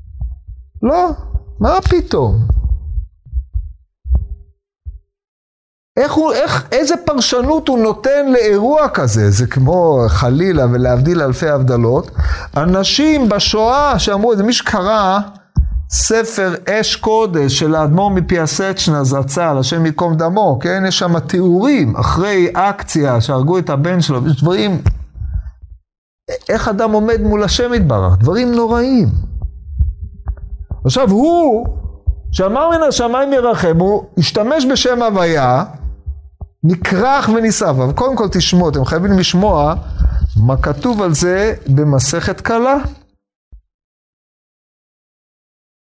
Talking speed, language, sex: 105 wpm, Hebrew, male